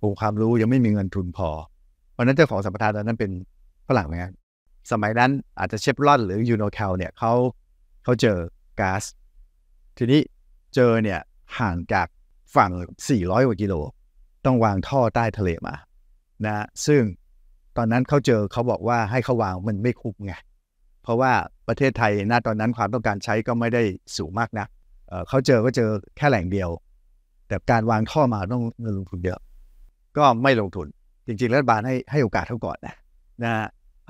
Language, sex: Thai, male